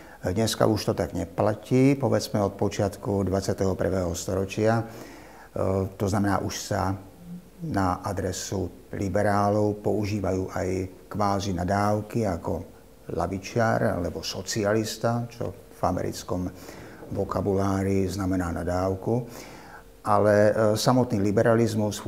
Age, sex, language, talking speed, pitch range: 50-69, male, Slovak, 95 wpm, 95-105 Hz